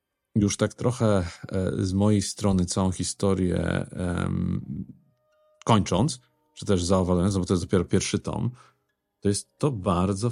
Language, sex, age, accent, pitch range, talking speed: Polish, male, 40-59, native, 90-110 Hz, 130 wpm